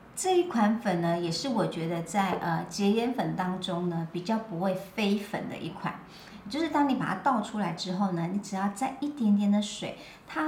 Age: 50-69